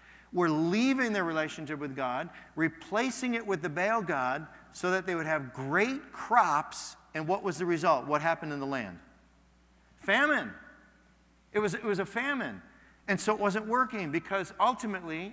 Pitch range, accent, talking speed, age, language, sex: 155-210 Hz, American, 165 wpm, 40-59, English, male